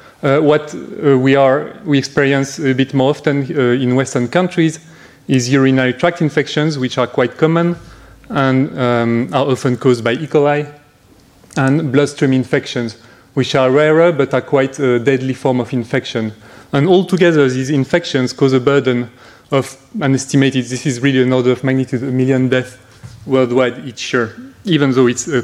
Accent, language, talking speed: French, French, 170 wpm